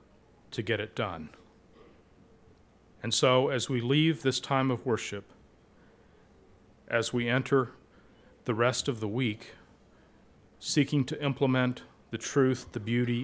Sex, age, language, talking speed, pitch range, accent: male, 40-59, English, 125 wpm, 100-125 Hz, American